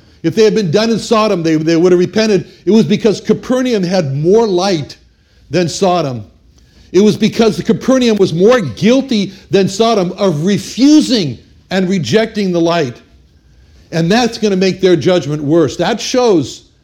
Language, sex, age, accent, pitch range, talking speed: English, male, 60-79, American, 160-220 Hz, 170 wpm